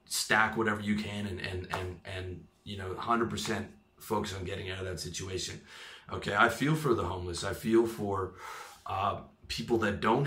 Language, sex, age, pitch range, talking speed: English, male, 30-49, 90-110 Hz, 180 wpm